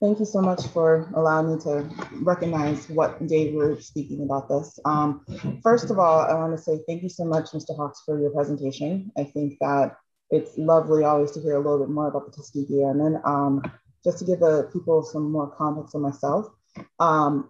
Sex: female